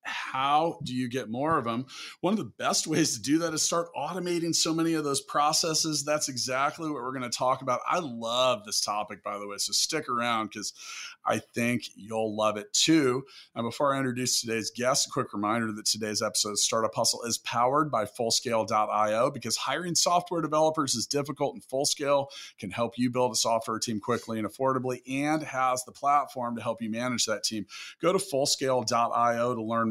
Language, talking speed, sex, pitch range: English, 200 wpm, male, 115-155 Hz